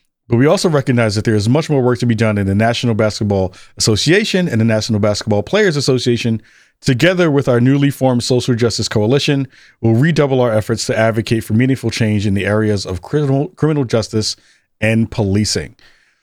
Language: English